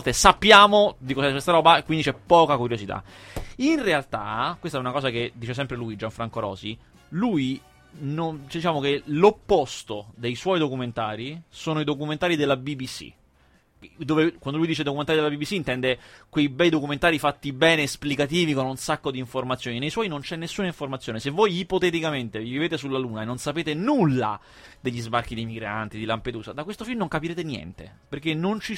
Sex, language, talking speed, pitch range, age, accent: male, Italian, 180 wpm, 120-160 Hz, 30-49, native